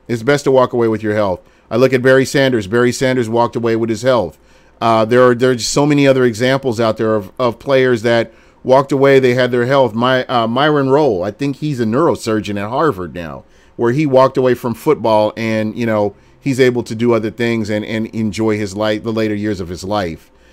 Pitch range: 115-145 Hz